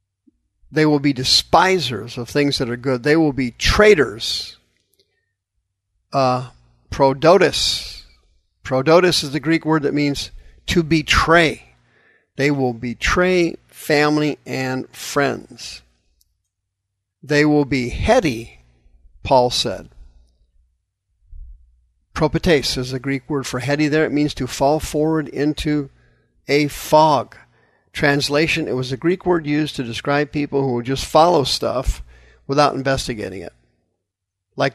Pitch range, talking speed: 100-150 Hz, 125 wpm